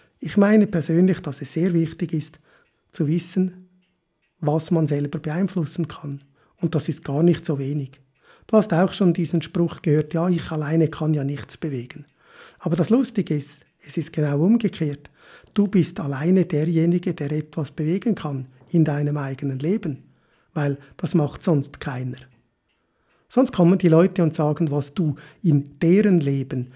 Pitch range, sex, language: 145-175 Hz, male, German